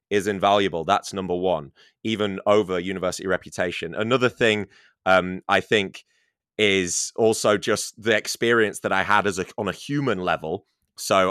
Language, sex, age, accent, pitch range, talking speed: English, male, 20-39, British, 95-110 Hz, 155 wpm